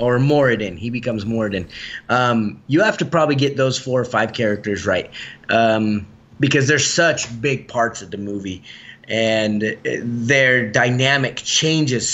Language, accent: English, American